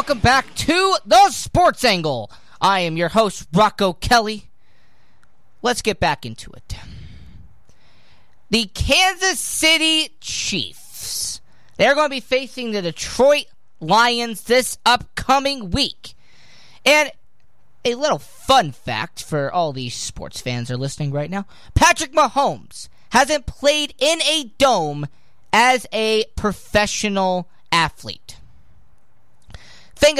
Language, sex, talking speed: English, male, 115 wpm